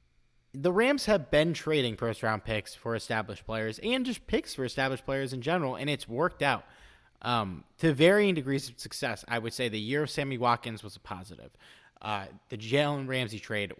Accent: American